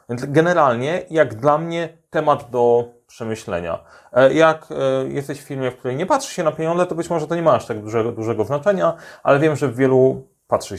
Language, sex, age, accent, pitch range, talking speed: Polish, male, 30-49, native, 120-160 Hz, 195 wpm